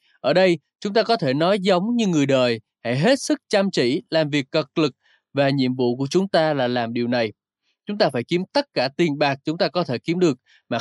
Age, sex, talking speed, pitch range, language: 20-39, male, 250 wpm, 145-210 Hz, Vietnamese